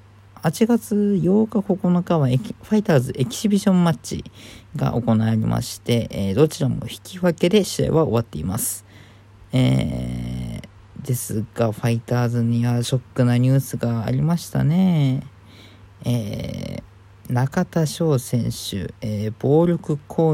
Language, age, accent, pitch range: Japanese, 40-59, native, 100-150 Hz